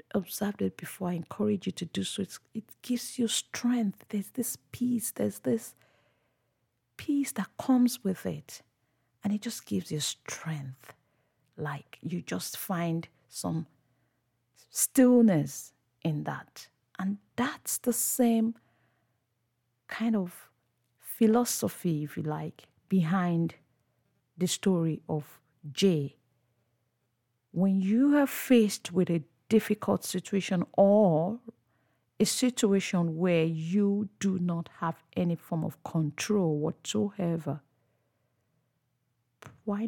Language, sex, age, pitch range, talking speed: English, female, 50-69, 140-210 Hz, 110 wpm